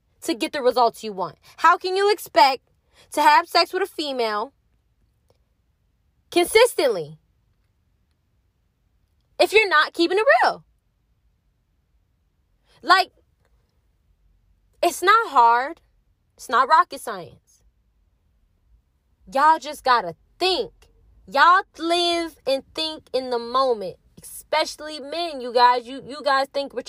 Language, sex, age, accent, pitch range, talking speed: English, female, 20-39, American, 235-345 Hz, 115 wpm